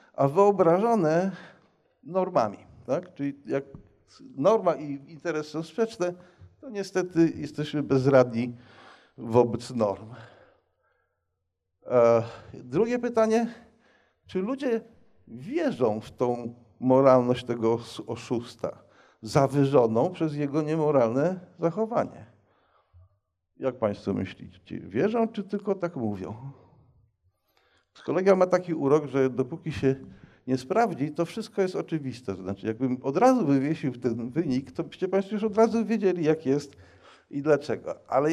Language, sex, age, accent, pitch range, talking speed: Polish, male, 50-69, native, 120-190 Hz, 115 wpm